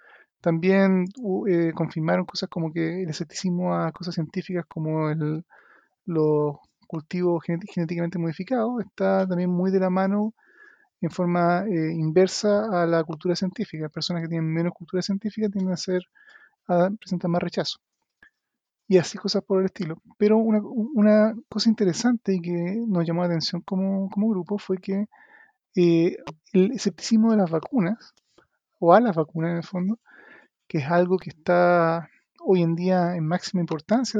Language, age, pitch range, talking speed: Spanish, 30-49, 170-210 Hz, 155 wpm